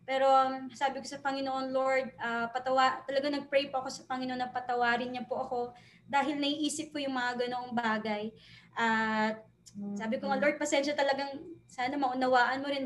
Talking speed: 175 wpm